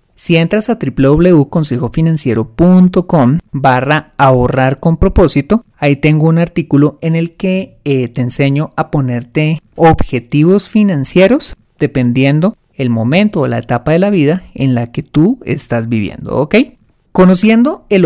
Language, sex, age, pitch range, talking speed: Spanish, male, 30-49, 130-175 Hz, 135 wpm